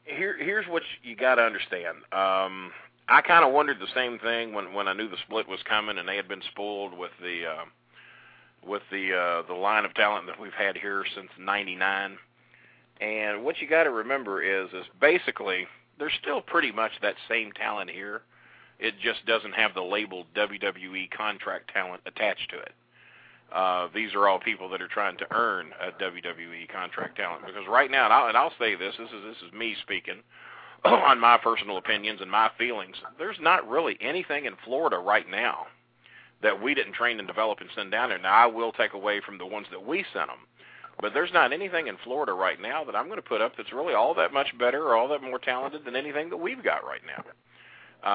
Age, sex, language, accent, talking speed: 40-59, male, English, American, 215 wpm